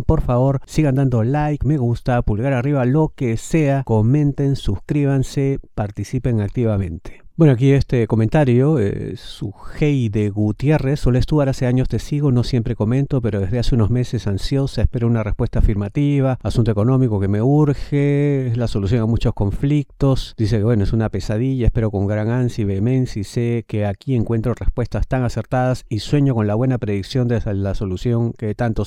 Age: 50-69